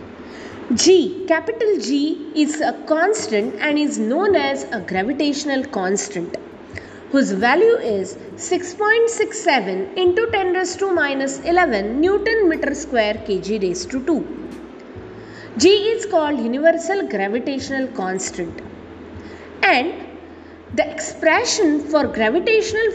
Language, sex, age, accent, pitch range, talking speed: English, female, 20-39, Indian, 245-360 Hz, 105 wpm